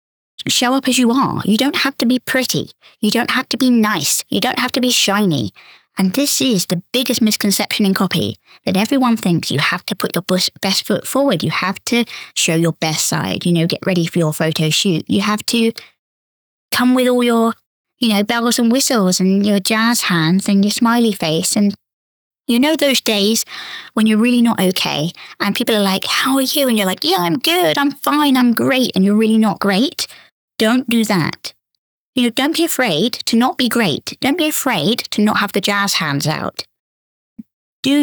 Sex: female